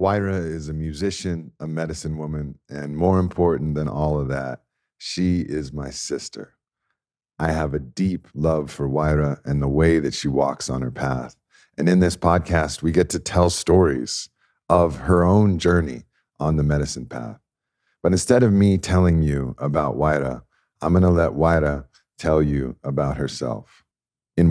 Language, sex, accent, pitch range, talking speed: English, male, American, 75-90 Hz, 165 wpm